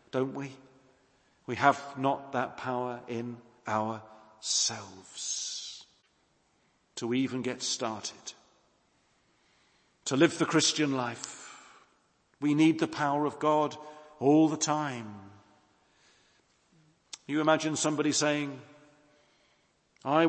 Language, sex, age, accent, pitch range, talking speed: English, male, 50-69, British, 135-185 Hz, 95 wpm